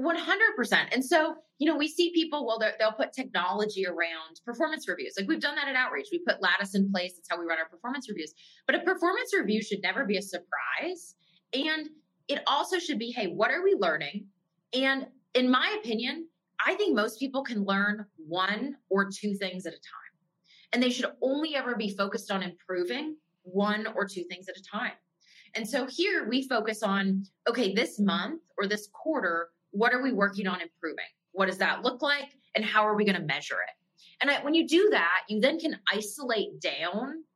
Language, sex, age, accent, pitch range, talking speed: English, female, 20-39, American, 190-275 Hz, 200 wpm